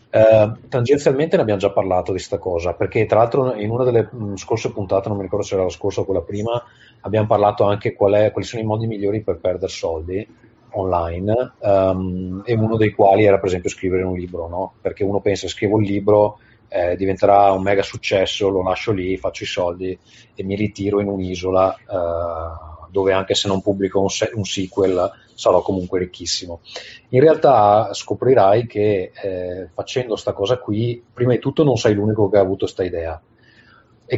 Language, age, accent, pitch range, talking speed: Italian, 30-49, native, 95-115 Hz, 190 wpm